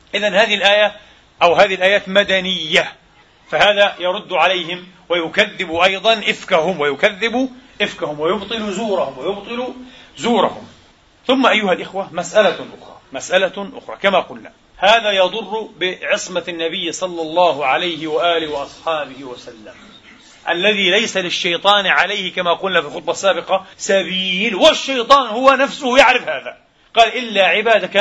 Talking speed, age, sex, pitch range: 120 wpm, 40-59, male, 185-235 Hz